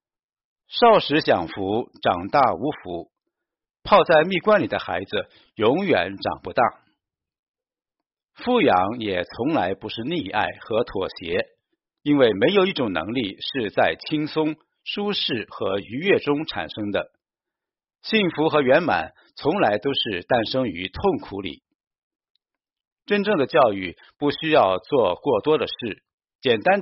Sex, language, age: male, Chinese, 50-69